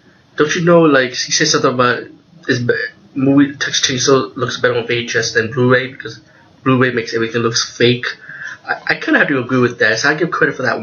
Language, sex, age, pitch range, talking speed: English, male, 20-39, 115-145 Hz, 215 wpm